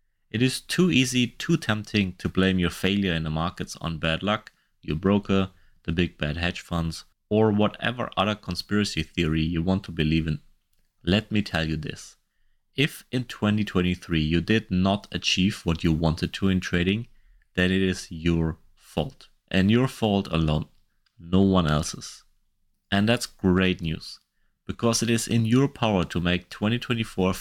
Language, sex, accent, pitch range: English, male, German, 85-105 Hz